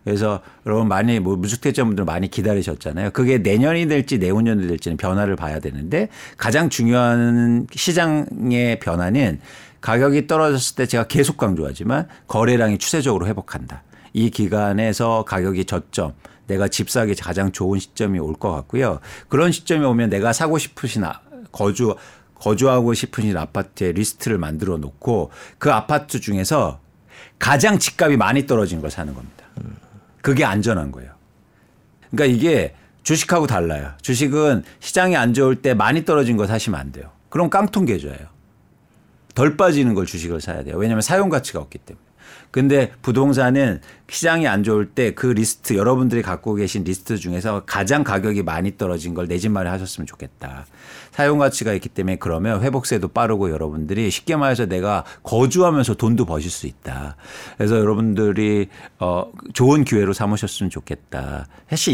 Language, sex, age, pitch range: Korean, male, 50-69, 95-130 Hz